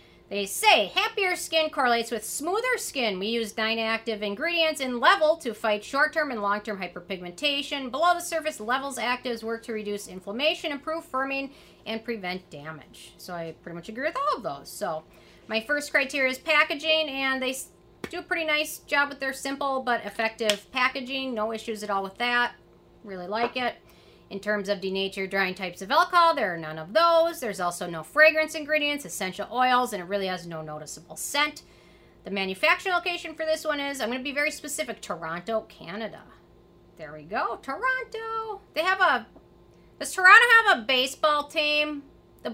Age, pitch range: 40-59, 205-310 Hz